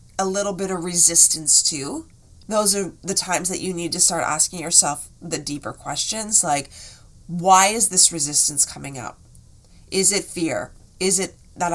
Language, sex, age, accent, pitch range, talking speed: English, female, 30-49, American, 155-190 Hz, 170 wpm